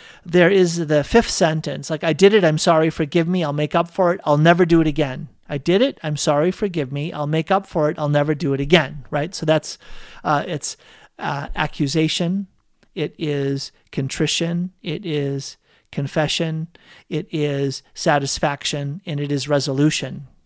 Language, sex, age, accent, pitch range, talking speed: English, male, 40-59, American, 150-185 Hz, 175 wpm